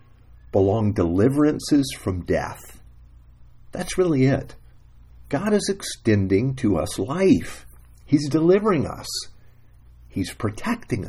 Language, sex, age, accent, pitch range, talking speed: English, male, 50-69, American, 80-130 Hz, 95 wpm